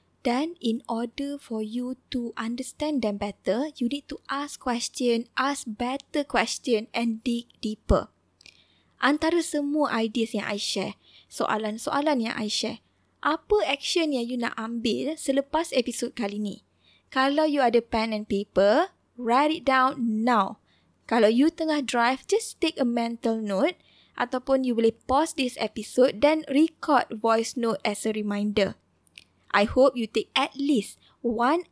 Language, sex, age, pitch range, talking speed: Malay, female, 20-39, 225-285 Hz, 150 wpm